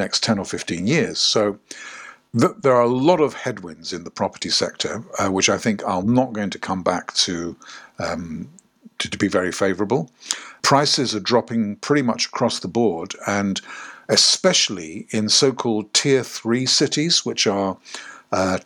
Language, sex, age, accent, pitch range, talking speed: English, male, 50-69, British, 105-130 Hz, 165 wpm